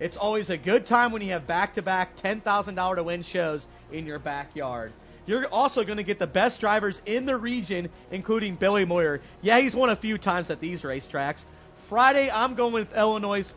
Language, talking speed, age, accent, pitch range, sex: English, 185 wpm, 30-49, American, 170-225 Hz, male